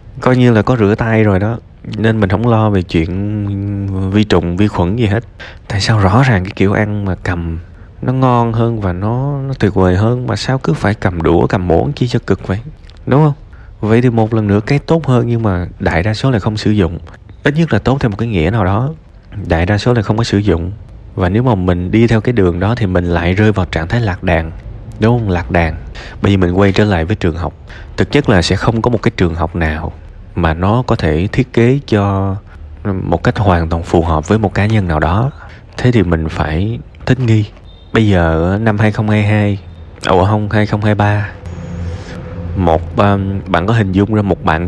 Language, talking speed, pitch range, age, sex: Vietnamese, 225 wpm, 90-115 Hz, 20-39, male